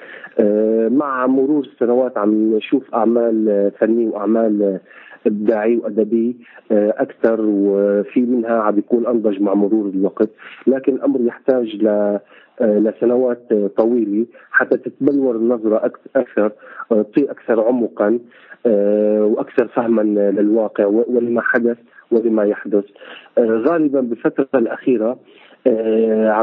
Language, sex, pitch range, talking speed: Arabic, male, 105-120 Hz, 100 wpm